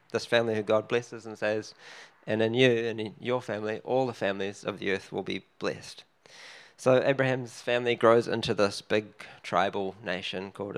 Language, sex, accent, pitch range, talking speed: English, male, Australian, 105-120 Hz, 185 wpm